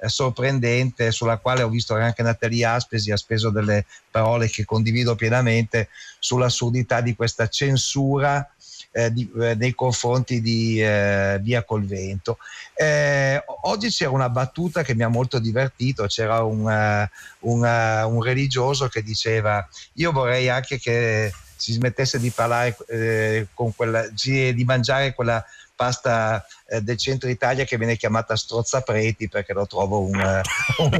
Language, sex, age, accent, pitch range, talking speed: Italian, male, 50-69, native, 115-135 Hz, 145 wpm